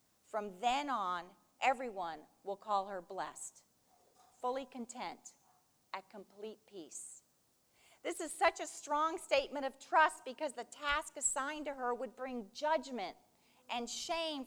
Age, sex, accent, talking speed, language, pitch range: 40-59, female, American, 135 wpm, English, 205-285 Hz